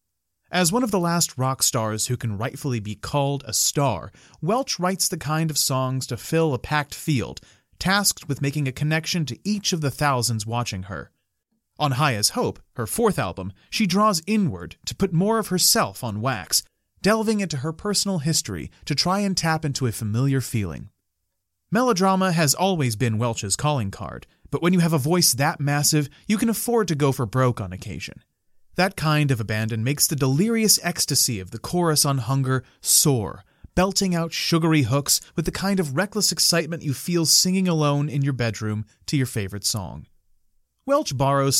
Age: 30-49